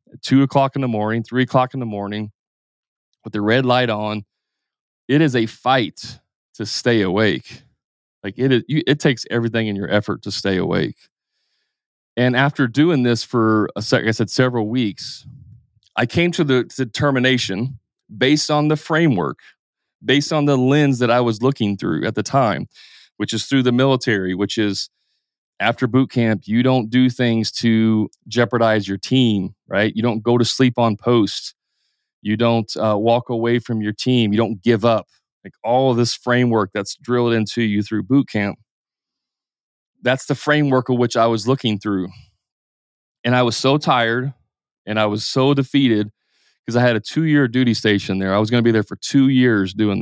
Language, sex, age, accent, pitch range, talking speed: English, male, 30-49, American, 110-130 Hz, 185 wpm